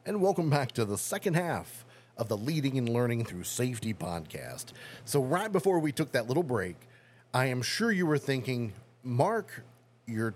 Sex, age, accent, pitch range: male, 40-59, American, 115-140 Hz